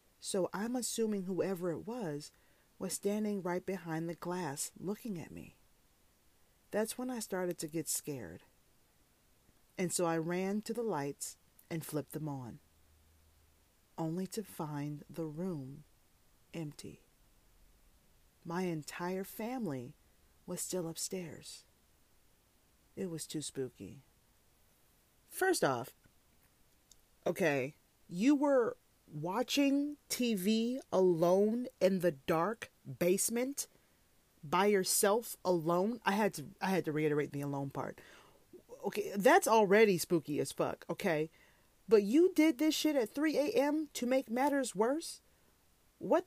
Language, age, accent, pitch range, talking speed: English, 40-59, American, 155-235 Hz, 120 wpm